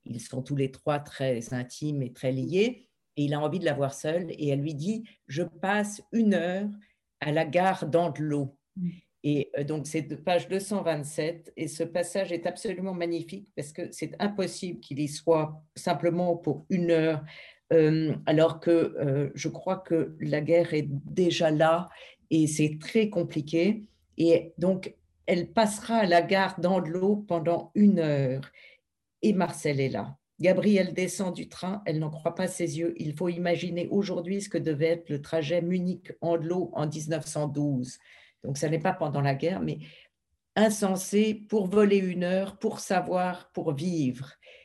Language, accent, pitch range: French, French, 150-185 Hz